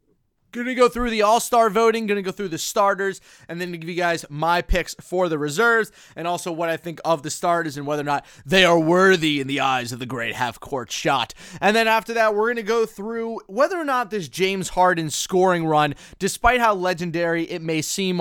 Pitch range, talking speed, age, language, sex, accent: 145-195 Hz, 230 wpm, 20-39, English, male, American